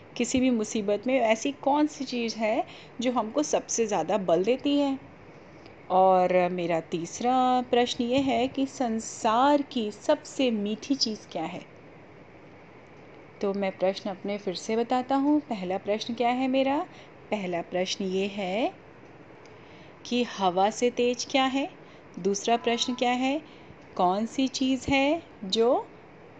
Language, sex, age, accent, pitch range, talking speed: Hindi, female, 30-49, native, 210-260 Hz, 140 wpm